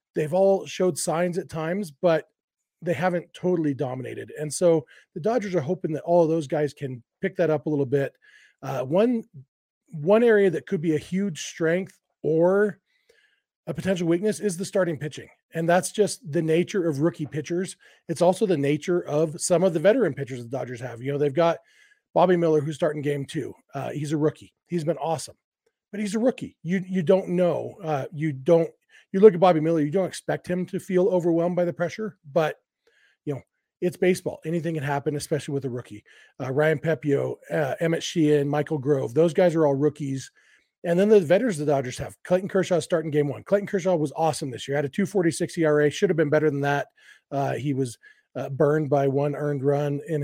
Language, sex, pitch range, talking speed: English, male, 145-185 Hz, 210 wpm